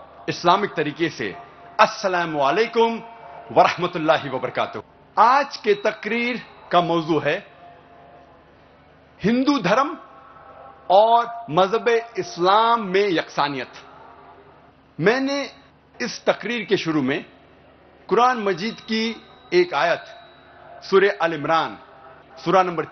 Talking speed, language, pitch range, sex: 80 wpm, Hindi, 175-255 Hz, male